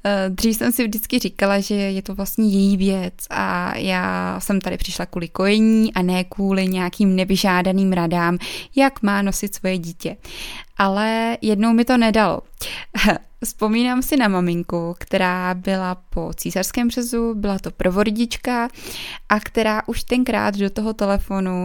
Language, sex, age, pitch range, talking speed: Czech, female, 20-39, 190-225 Hz, 145 wpm